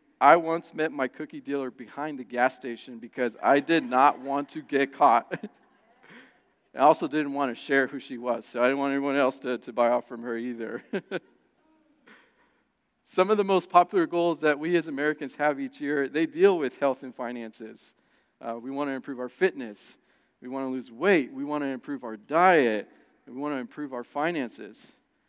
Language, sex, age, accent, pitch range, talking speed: English, male, 40-59, American, 130-170 Hz, 195 wpm